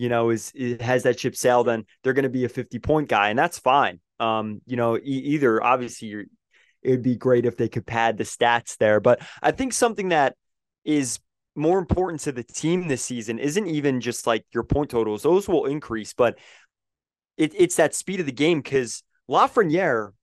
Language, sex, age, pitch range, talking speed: English, male, 20-39, 115-155 Hz, 210 wpm